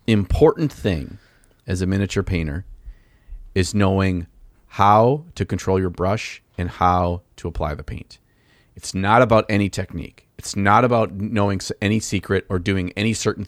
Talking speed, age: 150 wpm, 40-59